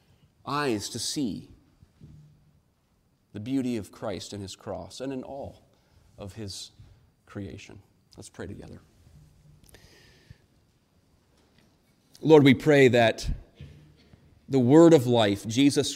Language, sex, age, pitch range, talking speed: English, male, 40-59, 110-150 Hz, 105 wpm